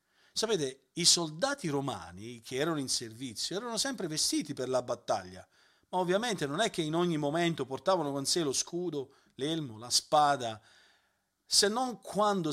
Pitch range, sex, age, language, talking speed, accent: 130-170 Hz, male, 40-59, Italian, 160 wpm, native